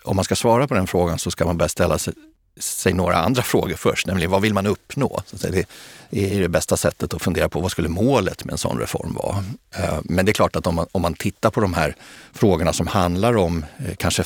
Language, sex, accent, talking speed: Swedish, male, native, 230 wpm